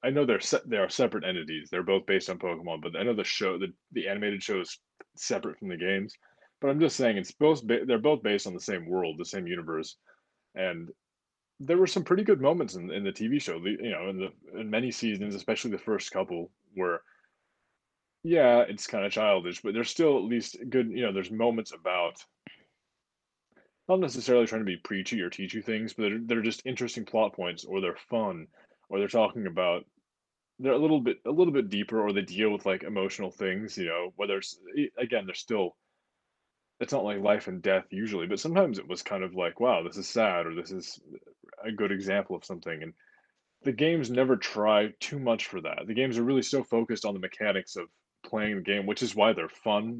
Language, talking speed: English, 220 wpm